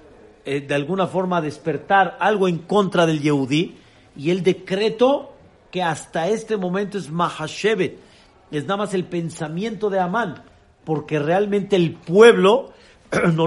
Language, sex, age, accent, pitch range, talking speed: Spanish, male, 50-69, Mexican, 130-185 Hz, 135 wpm